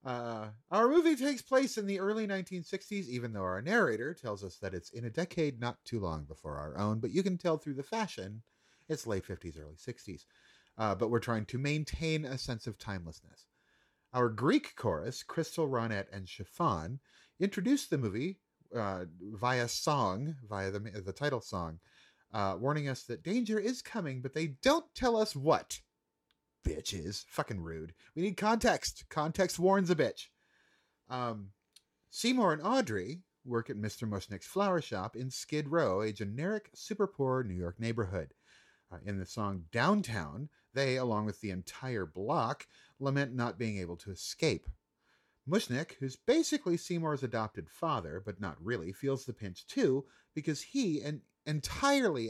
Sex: male